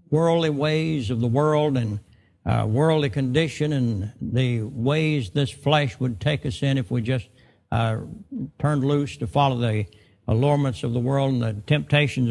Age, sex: 60-79, male